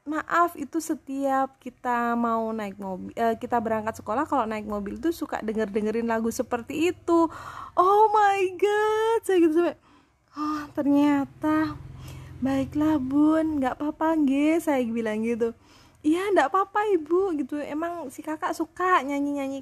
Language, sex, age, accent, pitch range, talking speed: Indonesian, female, 20-39, native, 220-300 Hz, 140 wpm